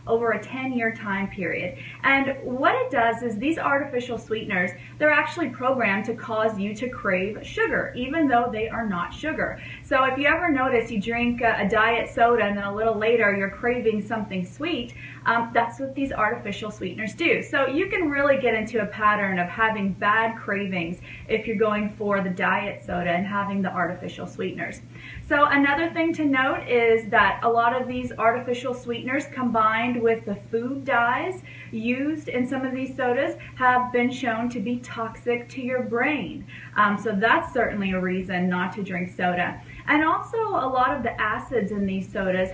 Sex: female